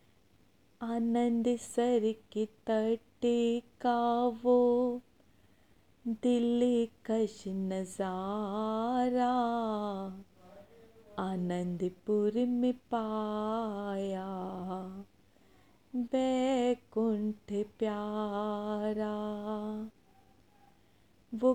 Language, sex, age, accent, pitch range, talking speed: Hindi, female, 30-49, native, 210-245 Hz, 40 wpm